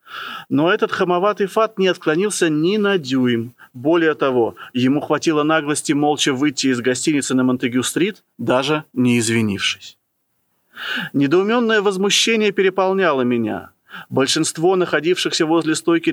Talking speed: 115 wpm